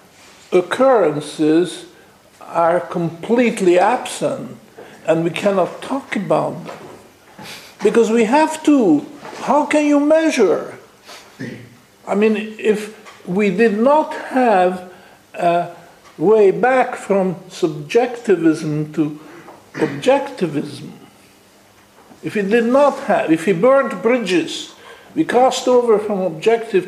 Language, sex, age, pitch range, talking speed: English, male, 50-69, 185-260 Hz, 105 wpm